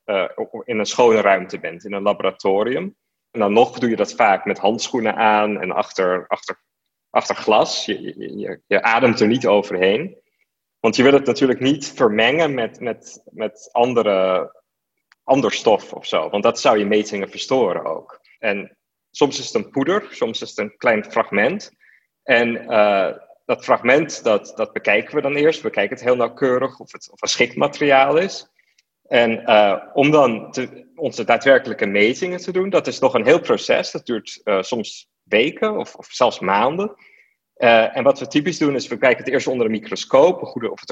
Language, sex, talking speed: Dutch, male, 175 wpm